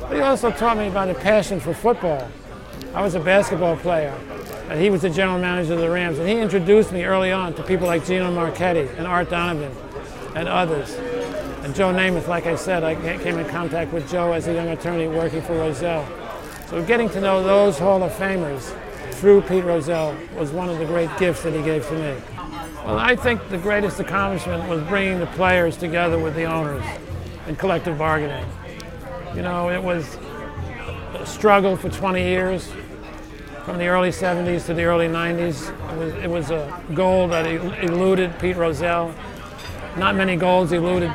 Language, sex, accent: English, male, American